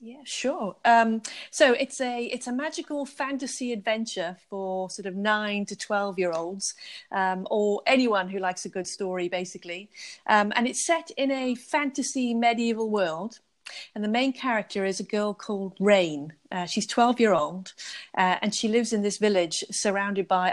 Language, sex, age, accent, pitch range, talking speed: English, female, 40-59, British, 185-230 Hz, 175 wpm